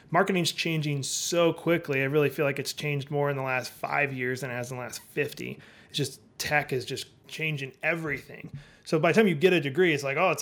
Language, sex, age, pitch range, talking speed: English, male, 30-49, 135-165 Hz, 240 wpm